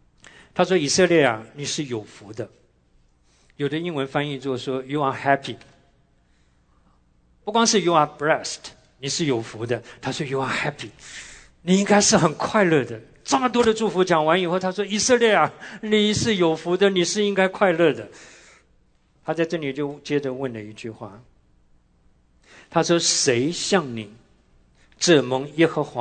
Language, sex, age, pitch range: English, male, 50-69, 115-170 Hz